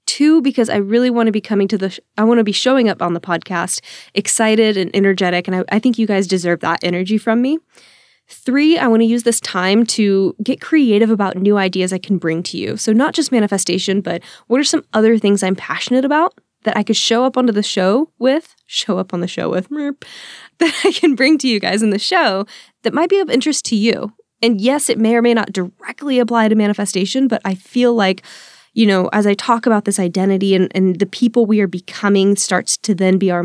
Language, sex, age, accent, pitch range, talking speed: English, female, 10-29, American, 185-235 Hz, 235 wpm